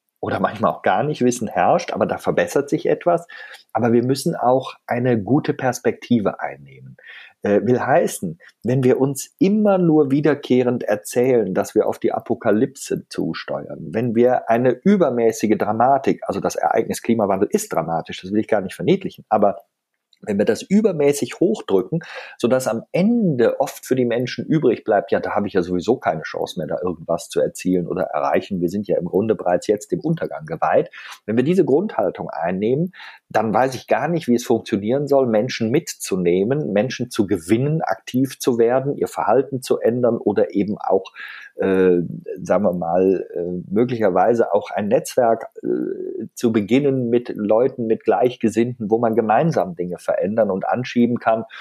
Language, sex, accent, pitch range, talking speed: German, male, German, 100-130 Hz, 170 wpm